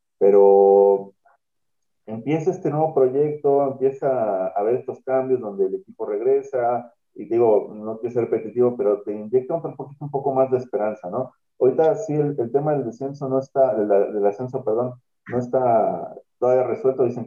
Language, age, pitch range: Spanish, 40-59, 110-140 Hz